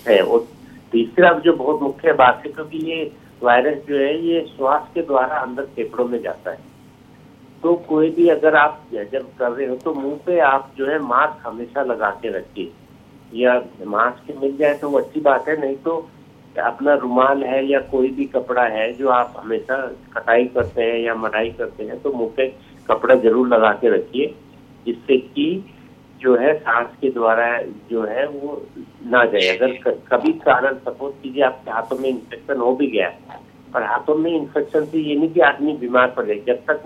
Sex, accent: male, Indian